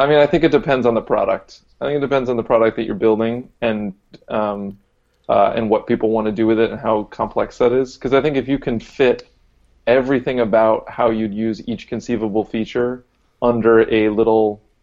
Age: 20-39